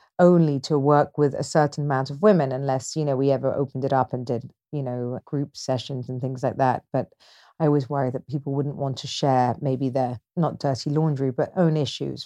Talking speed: 220 wpm